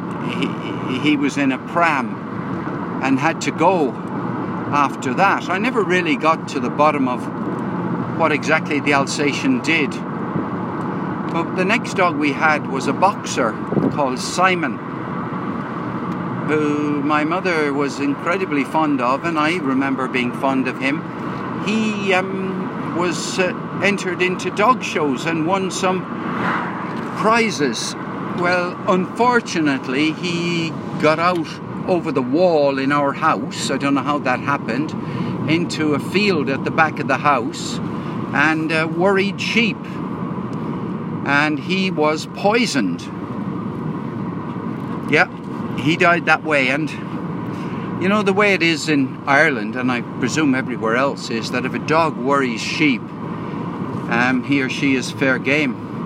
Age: 60-79